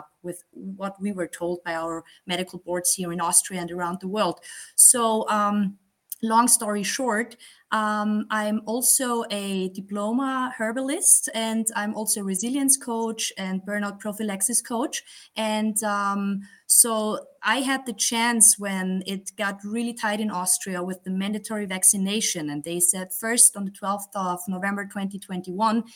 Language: English